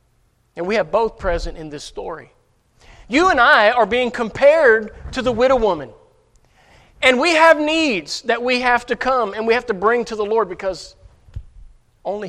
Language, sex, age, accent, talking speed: English, male, 40-59, American, 180 wpm